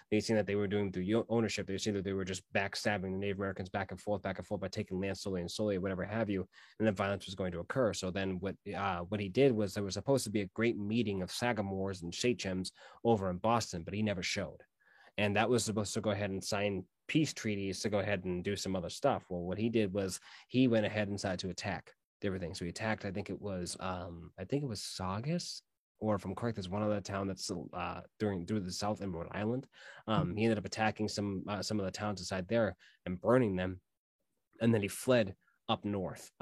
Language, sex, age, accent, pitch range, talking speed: English, male, 20-39, American, 95-105 Hz, 250 wpm